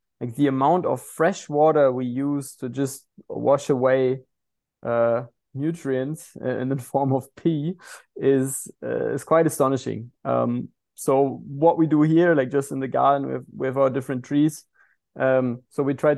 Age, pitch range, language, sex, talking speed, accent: 20-39, 125-145 Hz, English, male, 160 wpm, German